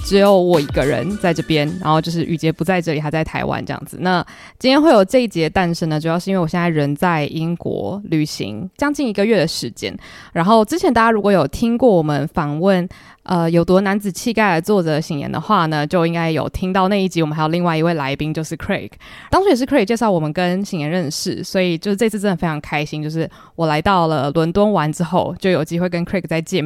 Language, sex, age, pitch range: Chinese, female, 20-39, 155-195 Hz